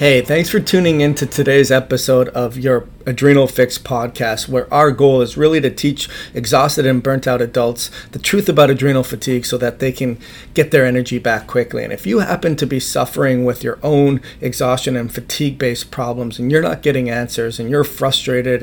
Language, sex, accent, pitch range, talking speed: English, male, American, 125-150 Hz, 195 wpm